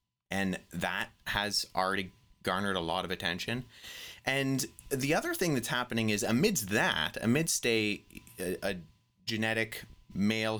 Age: 30-49